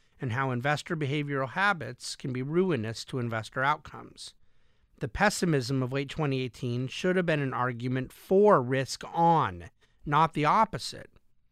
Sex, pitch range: male, 125-160 Hz